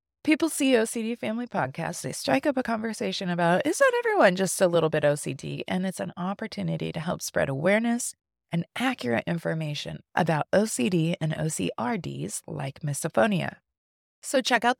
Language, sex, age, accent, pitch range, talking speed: English, female, 20-39, American, 165-245 Hz, 160 wpm